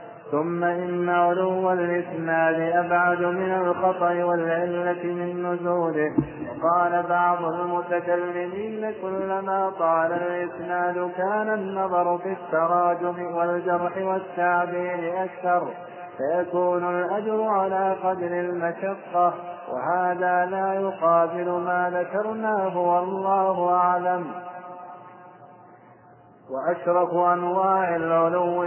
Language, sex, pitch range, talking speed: Arabic, male, 175-185 Hz, 80 wpm